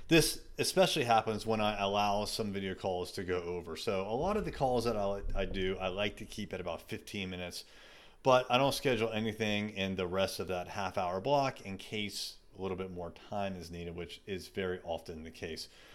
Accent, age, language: American, 30-49, English